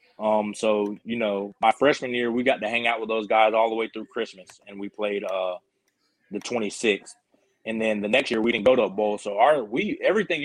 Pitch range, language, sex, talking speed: 110-135 Hz, English, male, 235 wpm